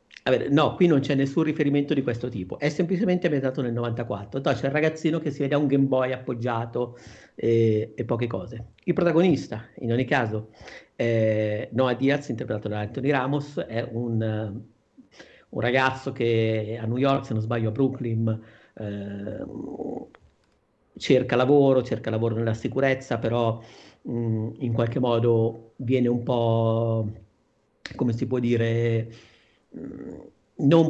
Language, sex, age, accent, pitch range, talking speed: Italian, male, 50-69, native, 110-130 Hz, 140 wpm